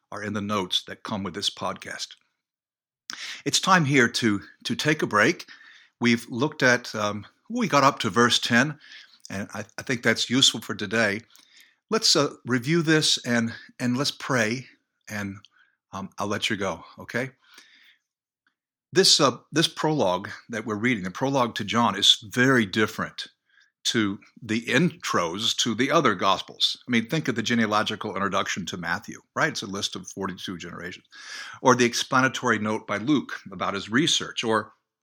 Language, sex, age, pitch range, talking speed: English, male, 50-69, 105-135 Hz, 165 wpm